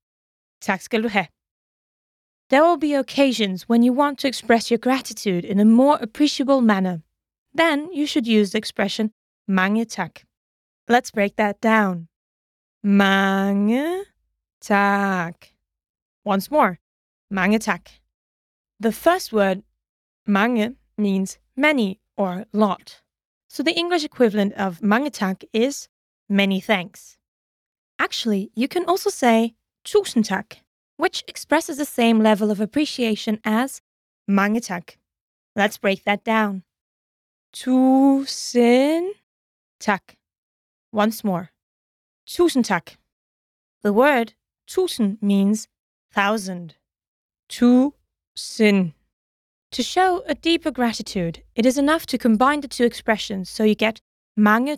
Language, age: English, 20-39